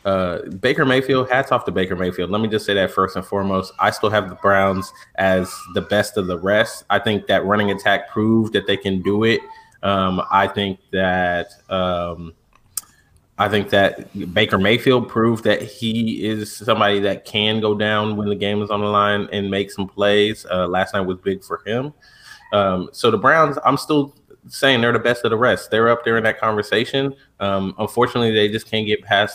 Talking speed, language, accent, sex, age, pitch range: 210 wpm, English, American, male, 20-39, 95-115 Hz